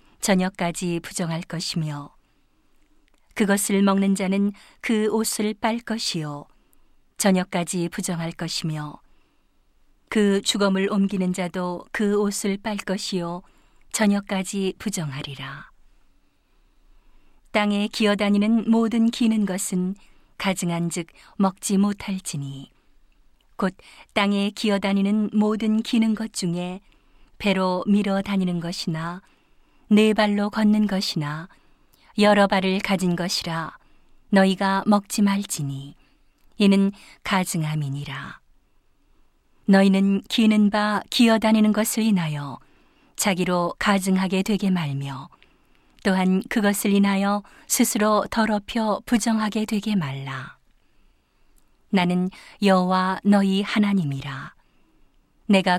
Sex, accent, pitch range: female, native, 180-210 Hz